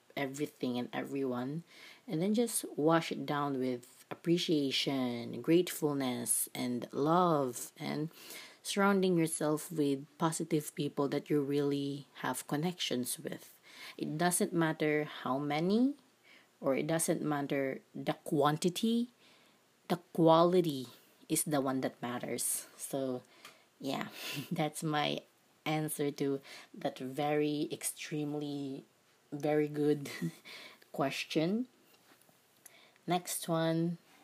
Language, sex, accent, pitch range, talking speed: English, female, Filipino, 140-170 Hz, 100 wpm